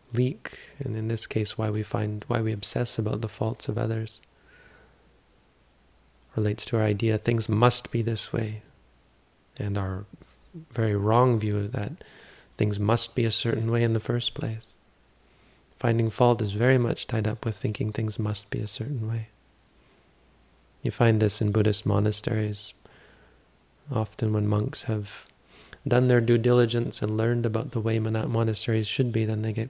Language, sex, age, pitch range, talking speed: English, male, 30-49, 105-115 Hz, 165 wpm